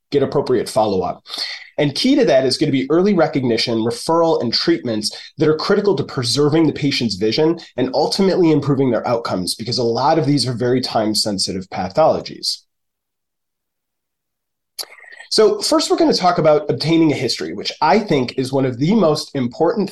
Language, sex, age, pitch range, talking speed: English, male, 30-49, 130-170 Hz, 170 wpm